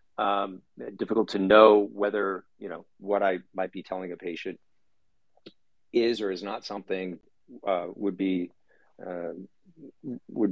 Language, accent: English, American